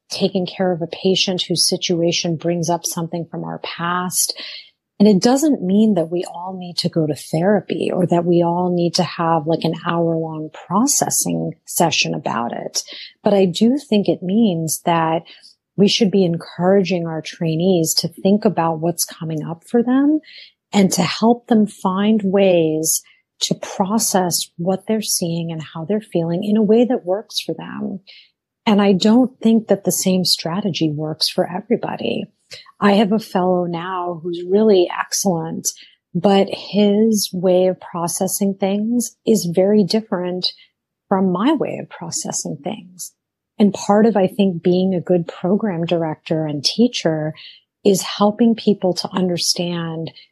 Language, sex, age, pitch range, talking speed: English, female, 30-49, 170-205 Hz, 160 wpm